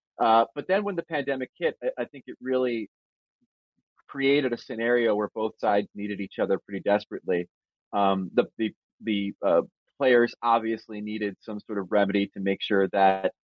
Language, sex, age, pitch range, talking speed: English, male, 30-49, 95-115 Hz, 175 wpm